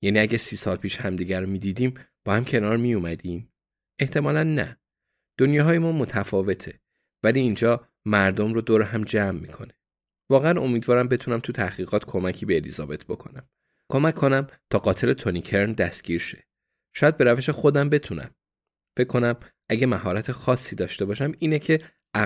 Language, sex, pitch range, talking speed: Persian, male, 95-125 Hz, 145 wpm